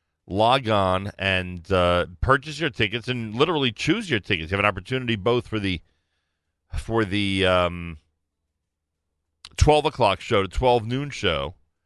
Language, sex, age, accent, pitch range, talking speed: English, male, 40-59, American, 80-120 Hz, 145 wpm